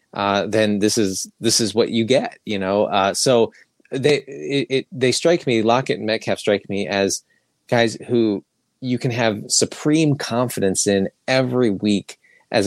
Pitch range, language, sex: 100-115 Hz, English, male